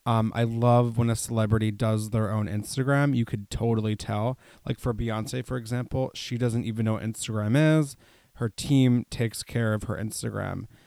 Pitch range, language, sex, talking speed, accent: 110-125 Hz, English, male, 180 wpm, American